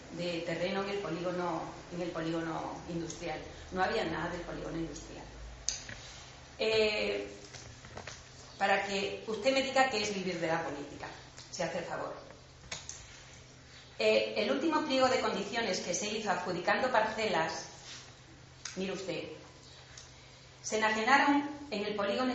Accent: Spanish